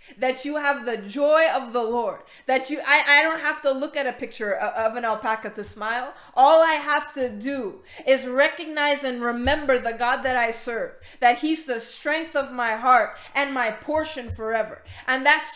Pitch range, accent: 240-290 Hz, American